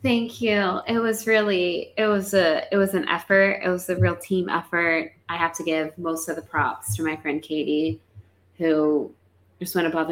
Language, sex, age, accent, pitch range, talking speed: English, female, 20-39, American, 150-185 Hz, 200 wpm